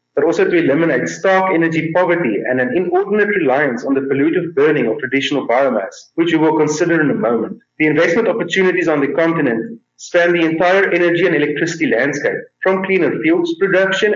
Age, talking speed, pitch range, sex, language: 30-49, 180 wpm, 140-190 Hz, male, English